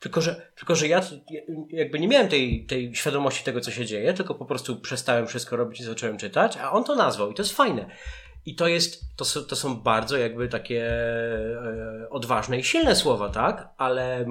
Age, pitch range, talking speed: 30-49, 120-150 Hz, 200 wpm